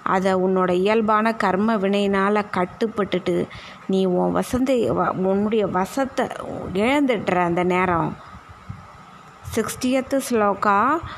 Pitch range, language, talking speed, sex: 200-240 Hz, Tamil, 85 wpm, female